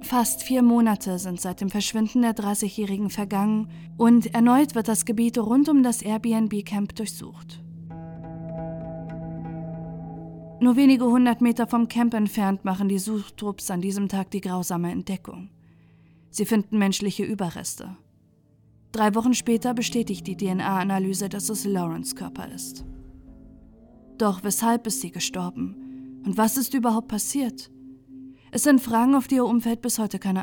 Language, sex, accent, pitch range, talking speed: German, female, German, 170-235 Hz, 140 wpm